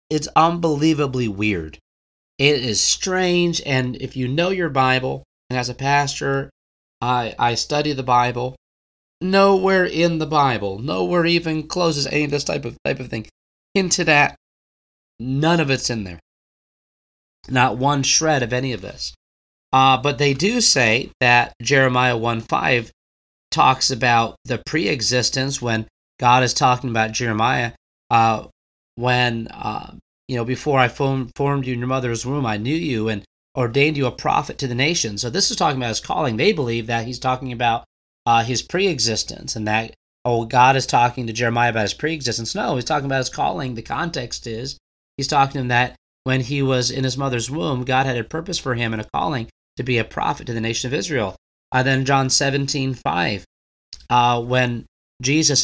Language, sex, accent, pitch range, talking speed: English, male, American, 115-140 Hz, 180 wpm